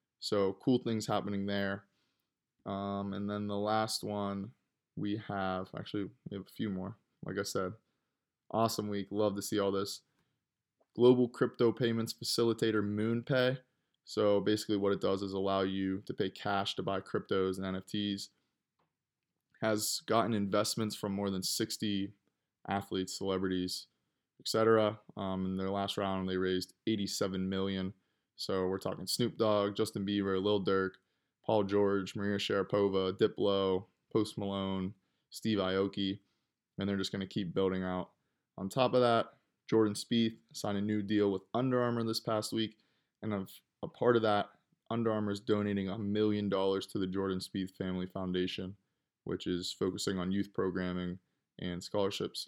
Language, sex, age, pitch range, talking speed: English, male, 20-39, 95-110 Hz, 160 wpm